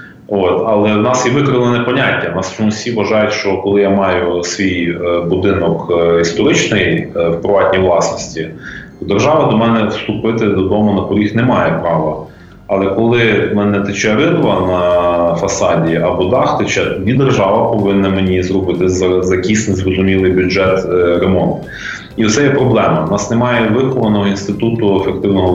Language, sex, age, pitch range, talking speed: Ukrainian, male, 30-49, 90-110 Hz, 155 wpm